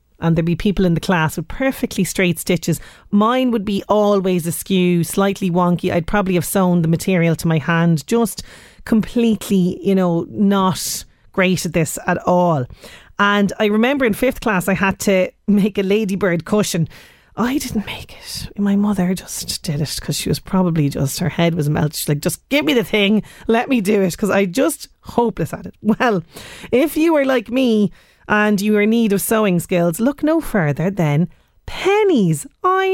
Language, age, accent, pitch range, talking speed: English, 30-49, Irish, 175-230 Hz, 190 wpm